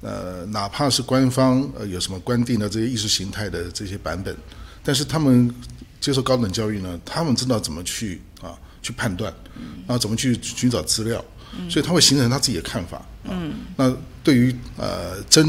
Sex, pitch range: male, 95-125 Hz